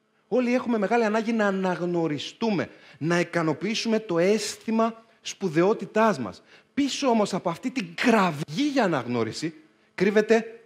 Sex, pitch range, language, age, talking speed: male, 170-225 Hz, Greek, 30-49, 120 wpm